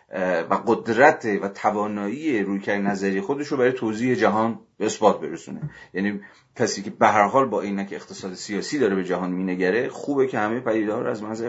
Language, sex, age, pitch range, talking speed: Persian, male, 40-59, 90-110 Hz, 185 wpm